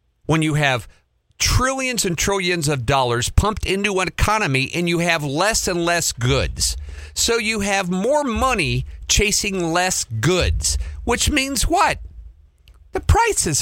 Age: 50-69